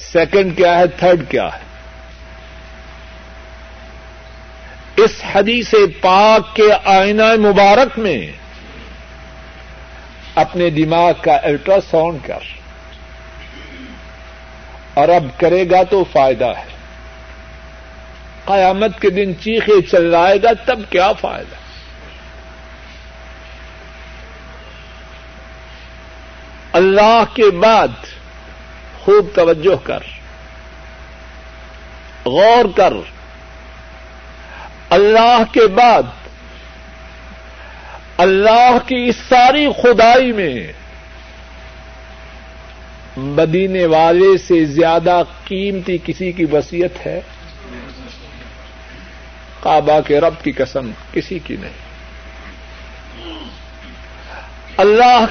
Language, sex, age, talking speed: Urdu, male, 60-79, 75 wpm